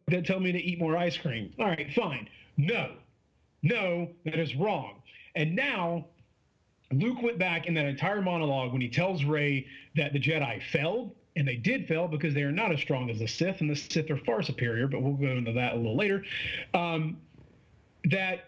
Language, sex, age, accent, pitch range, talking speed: English, male, 40-59, American, 140-180 Hz, 200 wpm